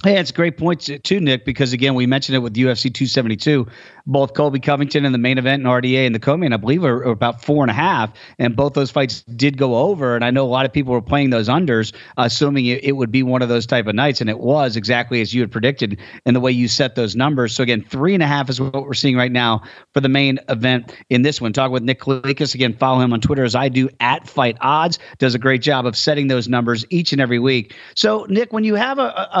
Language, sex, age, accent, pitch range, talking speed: English, male, 40-59, American, 125-155 Hz, 270 wpm